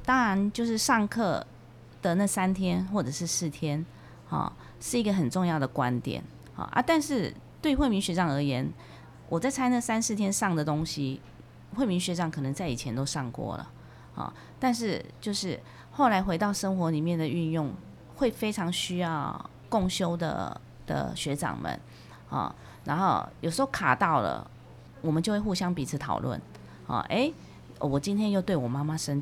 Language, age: Chinese, 30-49